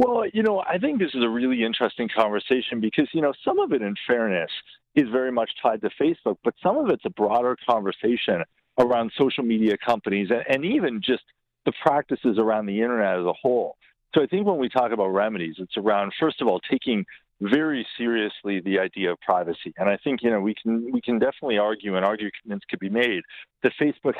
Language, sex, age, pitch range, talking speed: English, male, 50-69, 105-140 Hz, 210 wpm